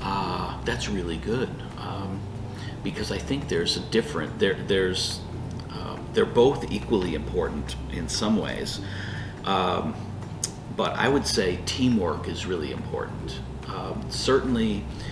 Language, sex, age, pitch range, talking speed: Vietnamese, male, 40-59, 90-110 Hz, 125 wpm